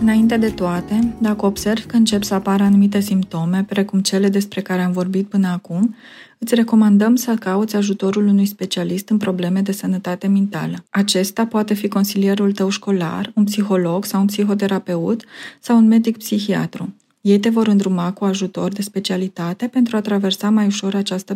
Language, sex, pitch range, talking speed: Romanian, female, 185-215 Hz, 165 wpm